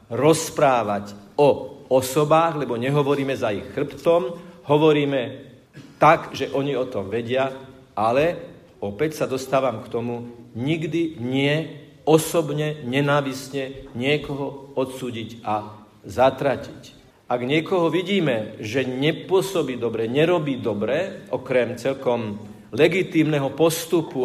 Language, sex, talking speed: Slovak, male, 100 wpm